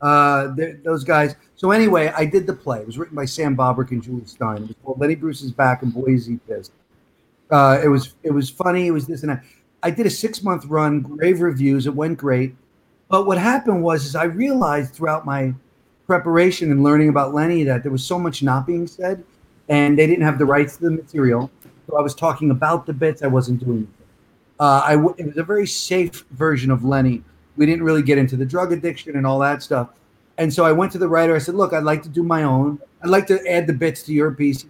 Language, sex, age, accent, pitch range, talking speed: English, male, 40-59, American, 130-160 Hz, 240 wpm